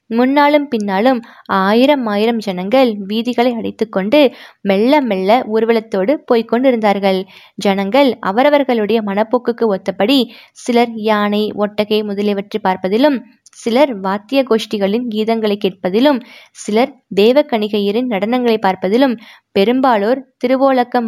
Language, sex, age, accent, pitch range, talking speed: Tamil, female, 20-39, native, 205-255 Hz, 95 wpm